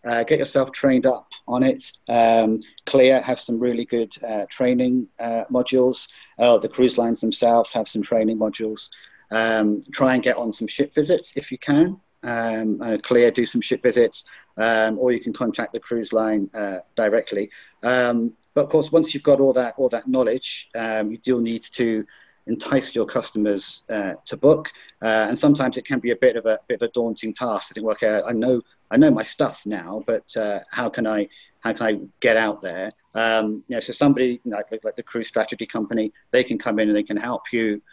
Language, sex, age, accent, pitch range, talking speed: English, male, 40-59, British, 110-130 Hz, 215 wpm